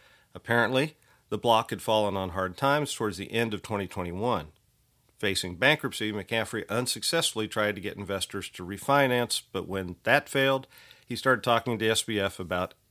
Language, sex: English, male